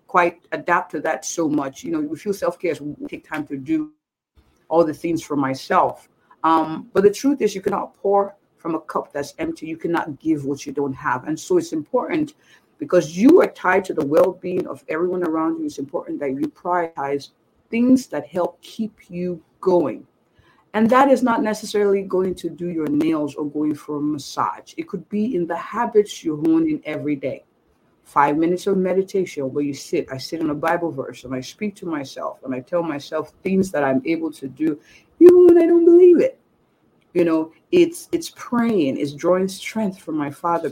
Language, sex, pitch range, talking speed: English, female, 150-235 Hz, 200 wpm